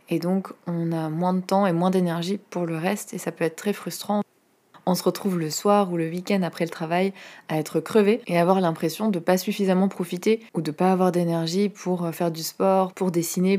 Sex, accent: female, French